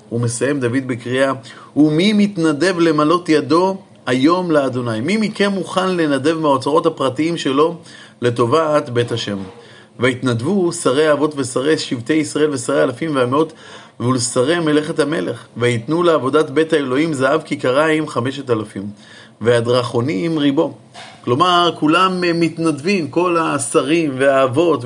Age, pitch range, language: 30-49, 125-165 Hz, Hebrew